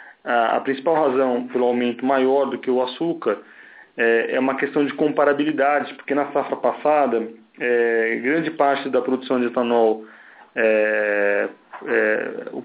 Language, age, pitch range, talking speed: Portuguese, 20-39, 120-140 Hz, 125 wpm